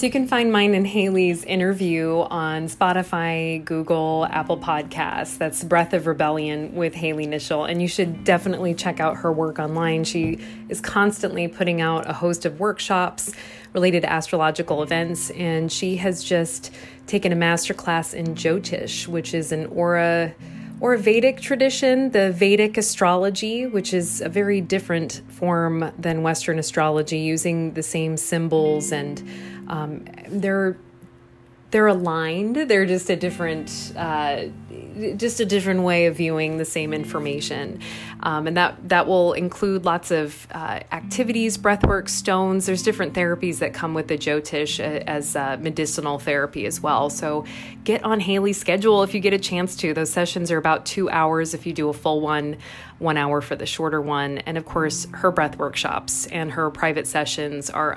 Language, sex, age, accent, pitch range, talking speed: English, female, 20-39, American, 155-185 Hz, 165 wpm